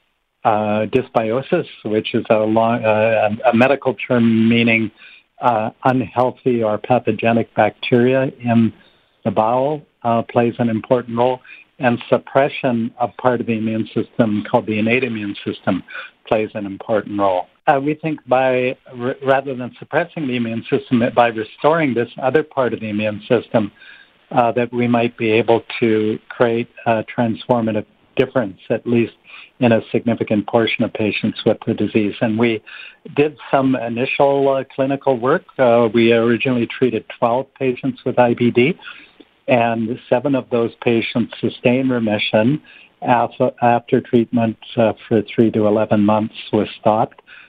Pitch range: 110-125 Hz